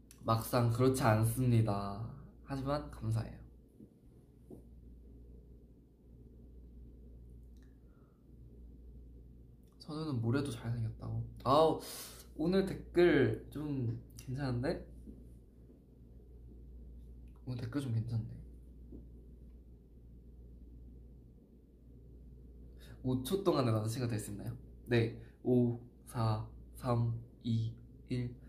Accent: native